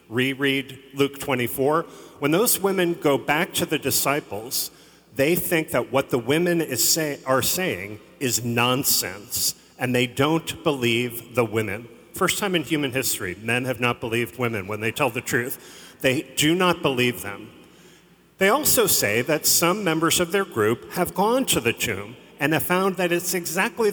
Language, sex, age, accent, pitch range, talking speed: English, male, 40-59, American, 125-165 Hz, 170 wpm